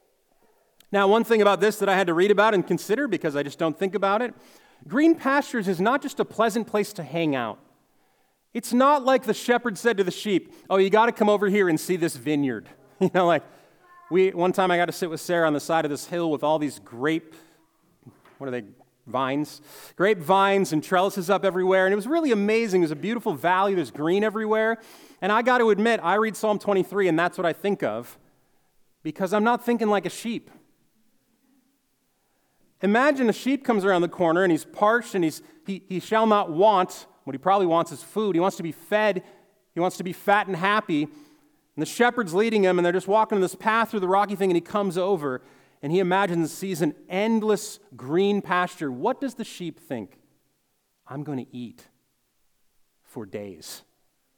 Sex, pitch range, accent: male, 160-215 Hz, American